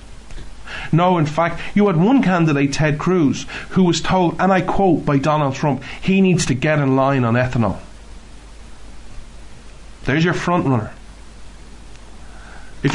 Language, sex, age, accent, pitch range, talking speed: English, male, 30-49, Irish, 130-180 Hz, 145 wpm